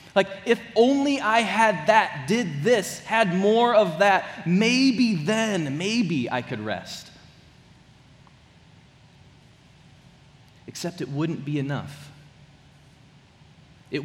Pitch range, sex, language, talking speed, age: 145-195 Hz, male, English, 105 wpm, 30-49